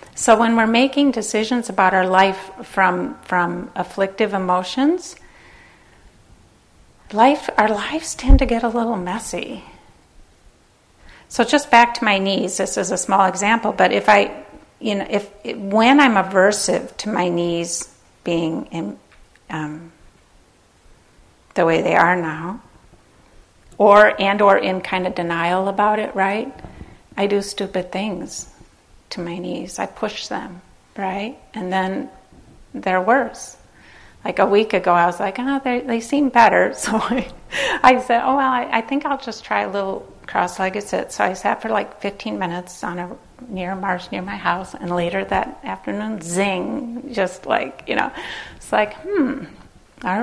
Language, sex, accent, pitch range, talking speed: English, female, American, 185-230 Hz, 160 wpm